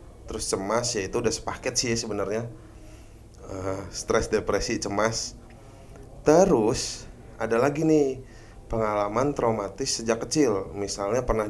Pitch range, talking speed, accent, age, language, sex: 105-140 Hz, 115 wpm, native, 20-39, Indonesian, male